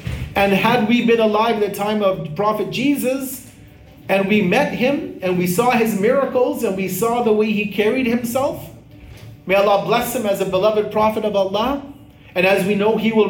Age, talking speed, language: 40-59, 200 wpm, English